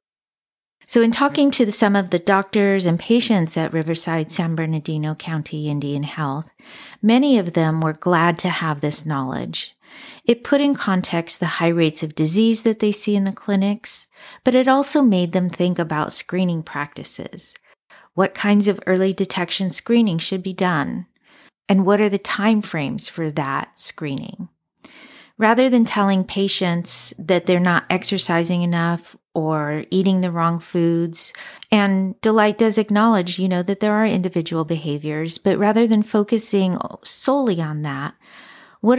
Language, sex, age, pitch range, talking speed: English, female, 40-59, 165-210 Hz, 155 wpm